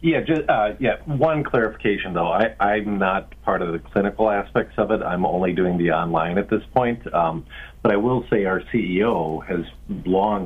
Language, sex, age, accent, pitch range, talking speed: English, male, 50-69, American, 80-110 Hz, 195 wpm